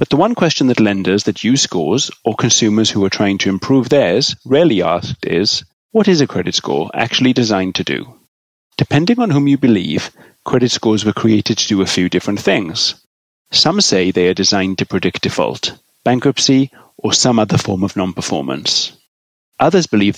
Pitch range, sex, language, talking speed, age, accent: 95-125 Hz, male, English, 180 wpm, 30-49, British